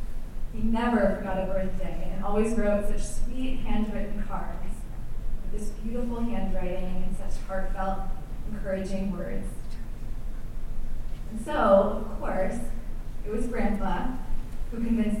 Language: English